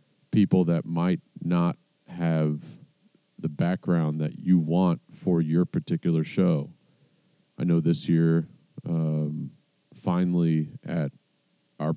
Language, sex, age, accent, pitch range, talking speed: English, male, 40-59, American, 85-100 Hz, 110 wpm